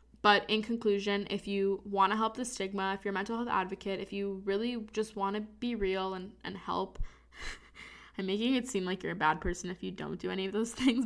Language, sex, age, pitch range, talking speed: English, female, 10-29, 155-210 Hz, 240 wpm